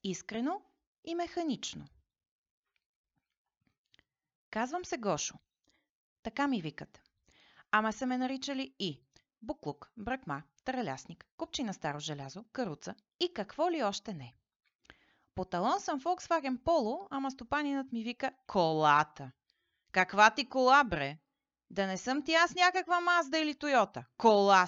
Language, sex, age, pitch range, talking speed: Bulgarian, female, 30-49, 175-280 Hz, 125 wpm